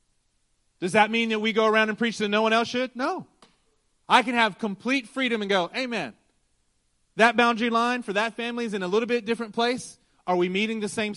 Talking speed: 220 wpm